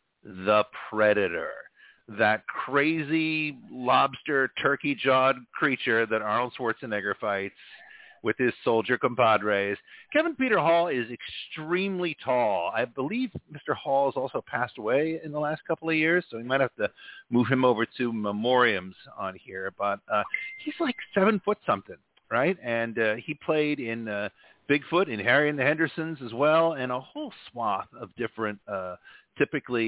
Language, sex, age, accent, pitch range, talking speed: English, male, 50-69, American, 110-165 Hz, 155 wpm